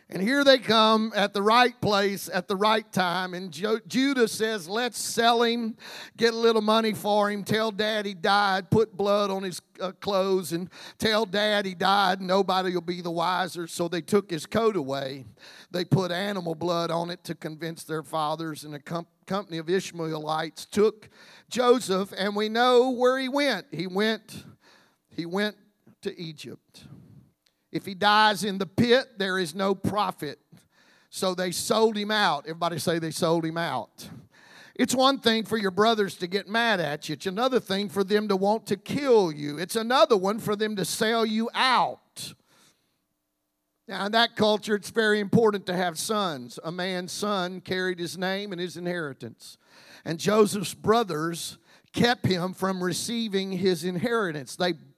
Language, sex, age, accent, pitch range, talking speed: English, male, 50-69, American, 175-215 Hz, 175 wpm